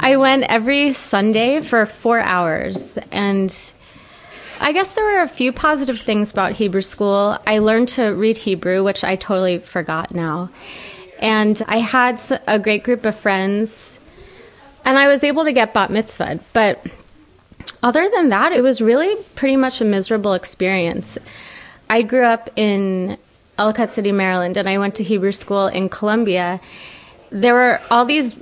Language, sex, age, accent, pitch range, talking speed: English, female, 30-49, American, 195-240 Hz, 160 wpm